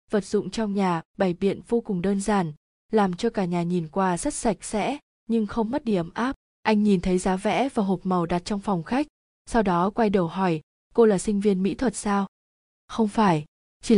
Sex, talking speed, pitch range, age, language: female, 220 wpm, 185-230 Hz, 20-39, Vietnamese